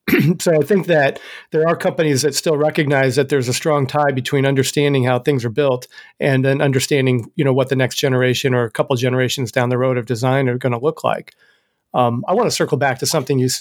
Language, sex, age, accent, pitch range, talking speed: English, male, 40-59, American, 135-165 Hz, 240 wpm